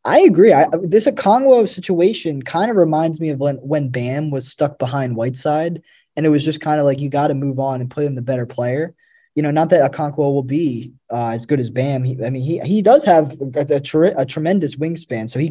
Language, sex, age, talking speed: English, male, 20-39, 240 wpm